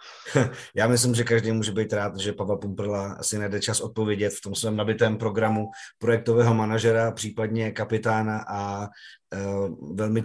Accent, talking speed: native, 150 wpm